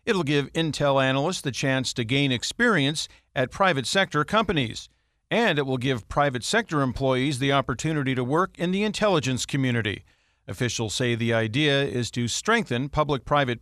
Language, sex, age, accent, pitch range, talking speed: English, male, 50-69, American, 125-160 Hz, 160 wpm